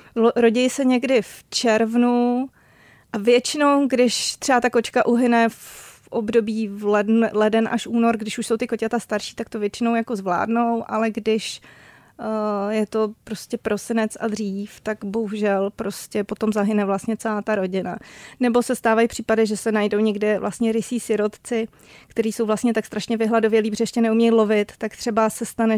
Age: 30-49